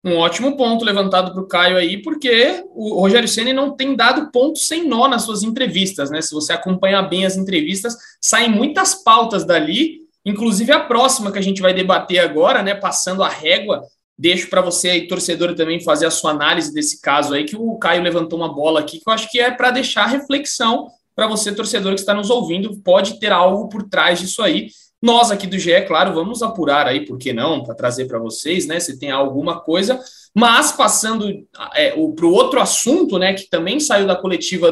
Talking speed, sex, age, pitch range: 205 wpm, male, 20-39, 175-255 Hz